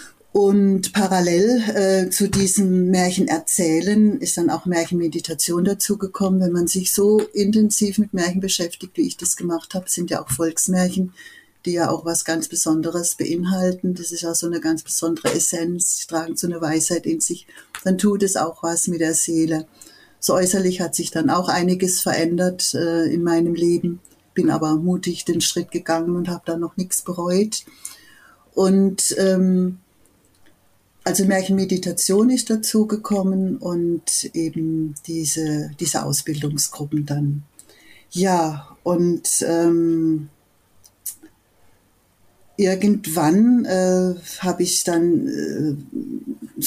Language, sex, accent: German, female, German